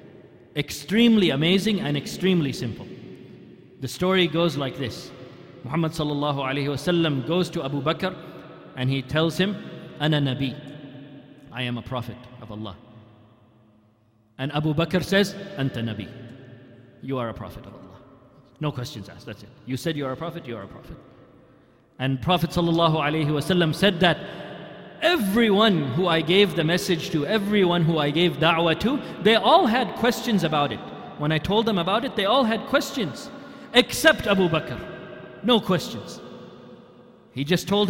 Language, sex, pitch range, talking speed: English, male, 130-185 Hz, 160 wpm